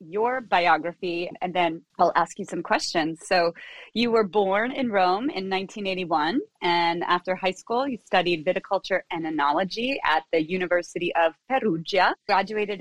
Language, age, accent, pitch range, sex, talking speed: English, 30-49, American, 175-225 Hz, female, 150 wpm